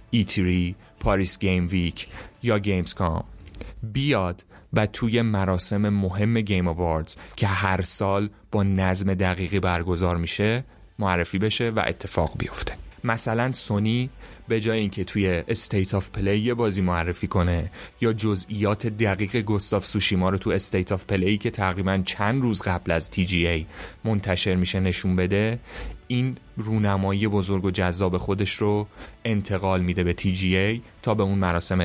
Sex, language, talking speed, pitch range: male, Persian, 140 wpm, 90-105 Hz